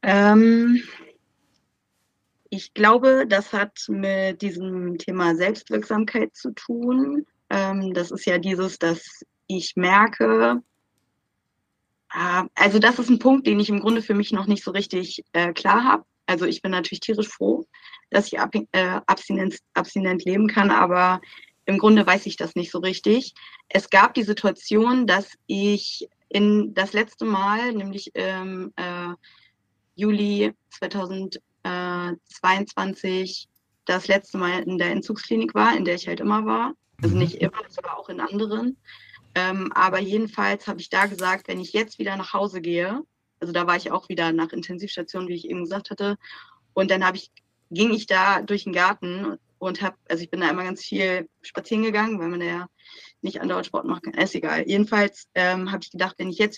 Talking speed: 170 wpm